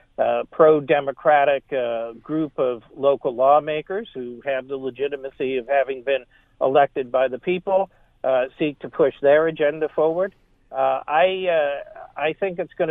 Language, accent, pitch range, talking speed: English, American, 130-150 Hz, 150 wpm